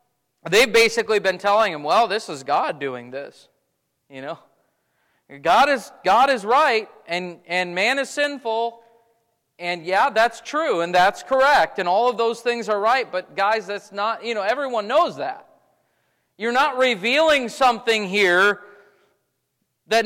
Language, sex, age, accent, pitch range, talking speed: English, male, 40-59, American, 180-240 Hz, 155 wpm